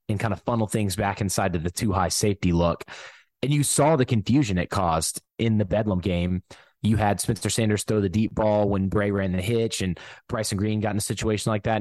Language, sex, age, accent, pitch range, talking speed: English, male, 20-39, American, 100-125 Hz, 240 wpm